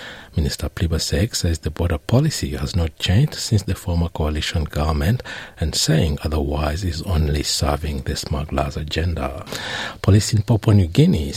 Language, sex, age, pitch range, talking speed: English, male, 60-79, 80-105 Hz, 150 wpm